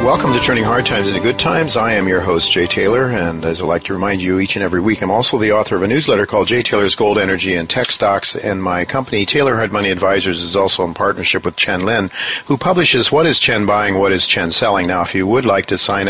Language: English